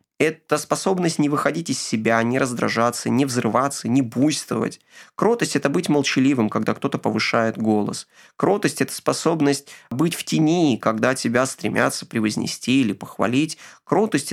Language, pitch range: Ukrainian, 125-160 Hz